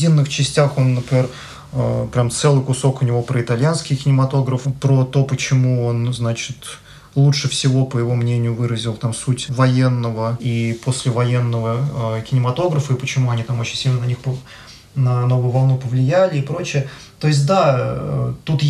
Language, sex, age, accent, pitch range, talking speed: Russian, male, 20-39, native, 125-140 Hz, 150 wpm